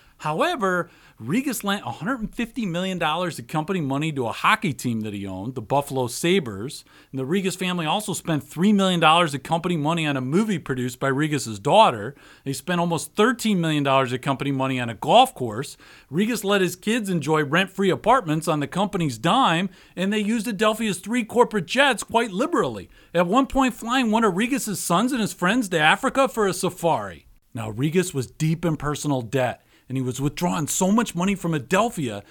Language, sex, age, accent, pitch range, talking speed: English, male, 40-59, American, 135-195 Hz, 185 wpm